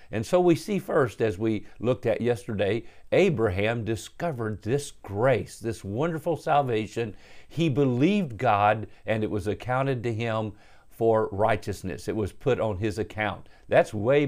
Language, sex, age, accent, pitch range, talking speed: English, male, 50-69, American, 110-145 Hz, 150 wpm